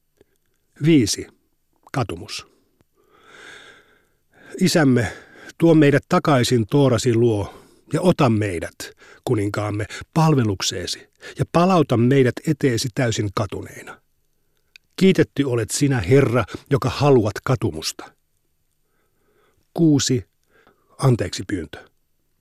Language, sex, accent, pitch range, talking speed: Finnish, male, native, 115-145 Hz, 80 wpm